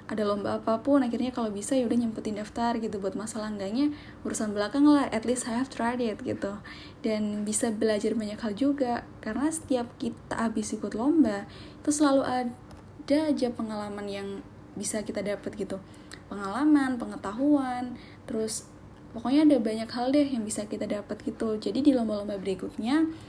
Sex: female